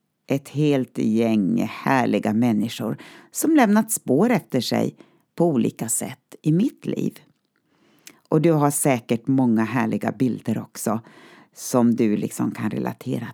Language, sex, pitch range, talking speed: Swedish, female, 120-185 Hz, 130 wpm